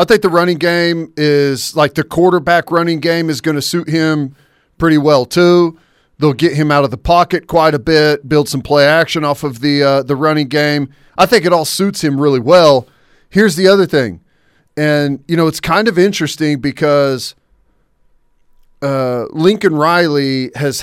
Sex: male